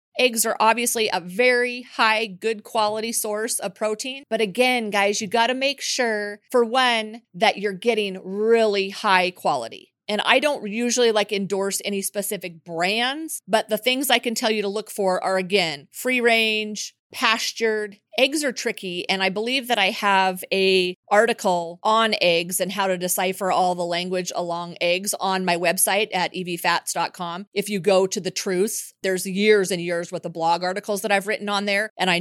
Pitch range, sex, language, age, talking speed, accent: 180-230 Hz, female, English, 30-49, 185 wpm, American